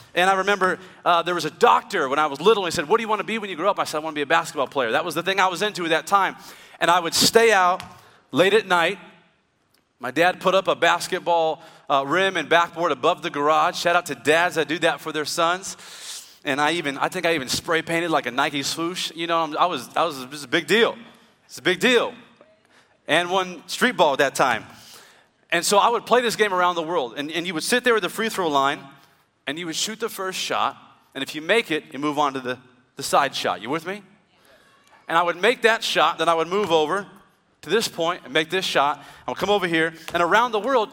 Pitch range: 150-195 Hz